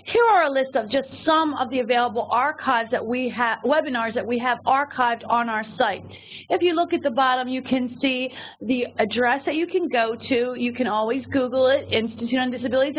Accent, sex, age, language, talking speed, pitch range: American, female, 40-59, English, 215 wpm, 240-285 Hz